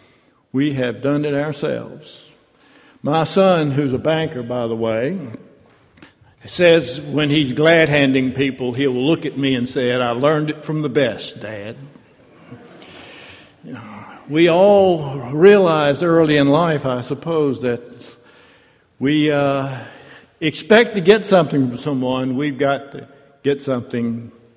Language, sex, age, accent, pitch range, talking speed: English, male, 60-79, American, 135-175 Hz, 130 wpm